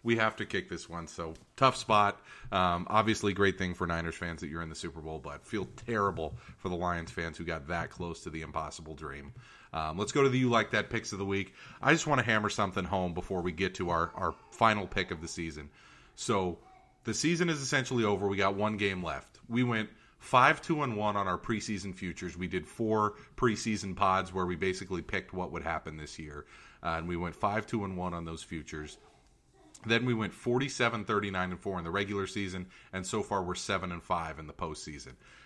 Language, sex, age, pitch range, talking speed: English, male, 30-49, 90-120 Hz, 215 wpm